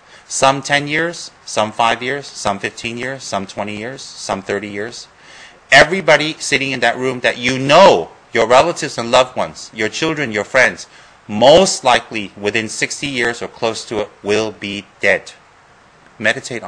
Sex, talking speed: male, 160 wpm